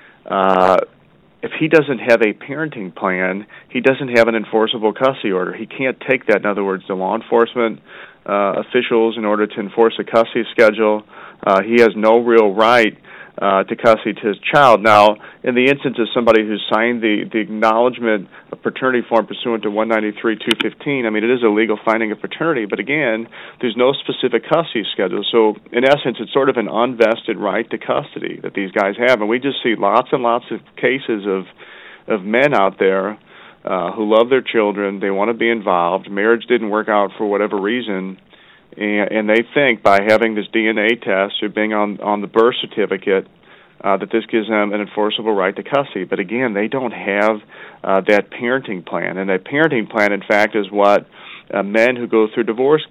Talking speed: 195 wpm